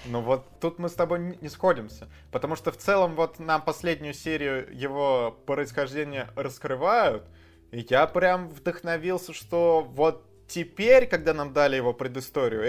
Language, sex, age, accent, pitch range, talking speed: Russian, male, 20-39, native, 125-170 Hz, 145 wpm